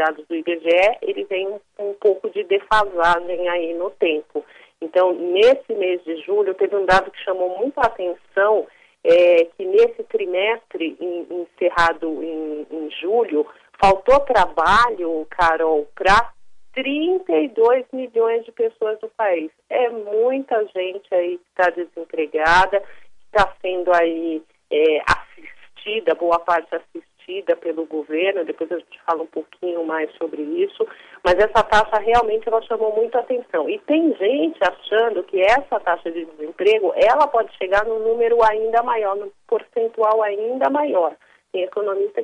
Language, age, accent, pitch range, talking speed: Portuguese, 40-59, Brazilian, 175-260 Hz, 150 wpm